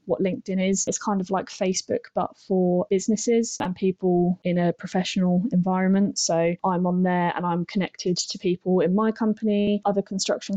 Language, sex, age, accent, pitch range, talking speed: English, female, 10-29, British, 180-200 Hz, 175 wpm